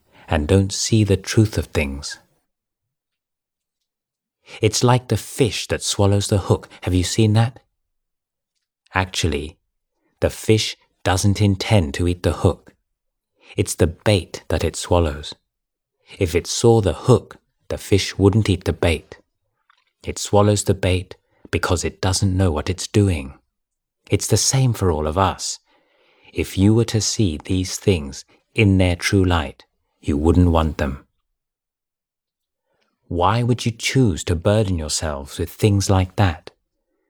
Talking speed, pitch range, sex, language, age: 145 wpm, 85-105 Hz, male, English, 30-49